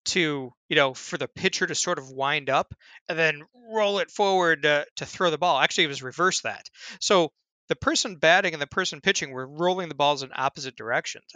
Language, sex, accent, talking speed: English, male, American, 215 wpm